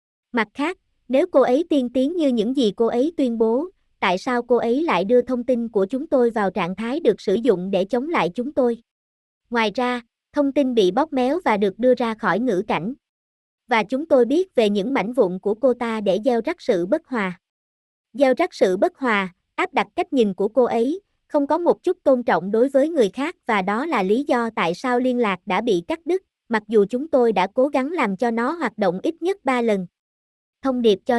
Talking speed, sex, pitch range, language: 235 wpm, male, 210-270 Hz, Vietnamese